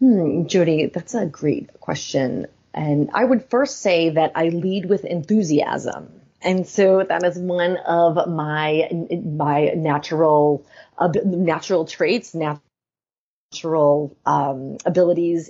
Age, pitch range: 30-49, 155-180 Hz